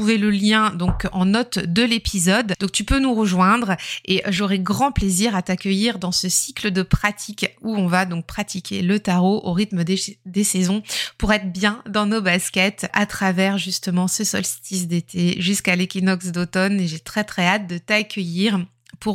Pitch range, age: 185-240 Hz, 20-39